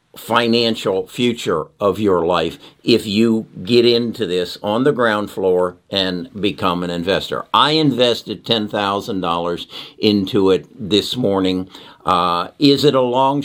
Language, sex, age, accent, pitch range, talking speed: English, male, 50-69, American, 95-130 Hz, 135 wpm